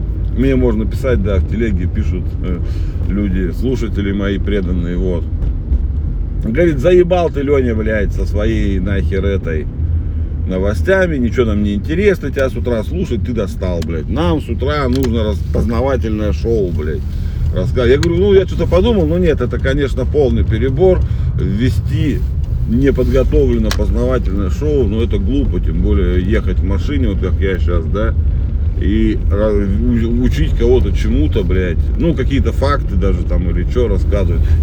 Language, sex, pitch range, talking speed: Russian, male, 80-100 Hz, 145 wpm